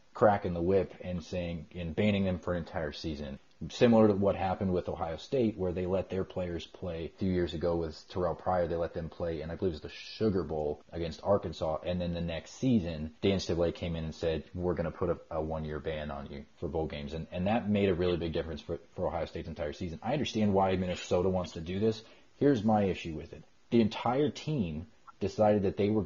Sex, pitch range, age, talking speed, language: male, 85-105 Hz, 30-49, 240 wpm, English